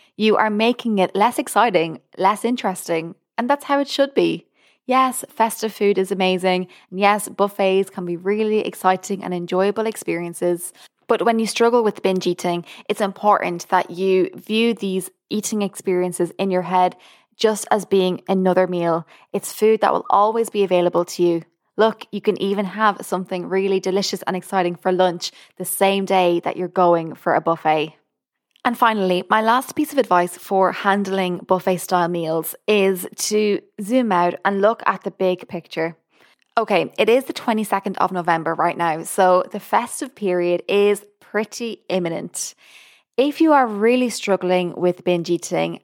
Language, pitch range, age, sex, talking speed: English, 180-210 Hz, 20-39, female, 165 wpm